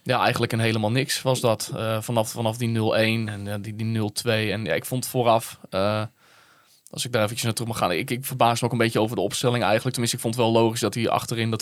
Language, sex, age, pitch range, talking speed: Dutch, male, 20-39, 110-130 Hz, 270 wpm